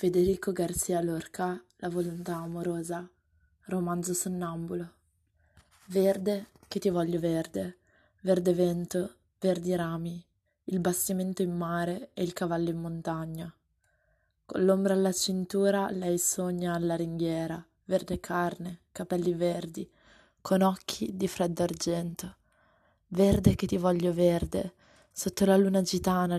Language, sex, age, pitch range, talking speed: Italian, female, 20-39, 170-185 Hz, 120 wpm